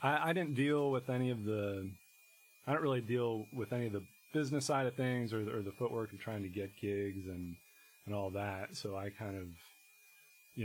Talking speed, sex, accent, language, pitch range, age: 215 wpm, male, American, English, 100-130 Hz, 30-49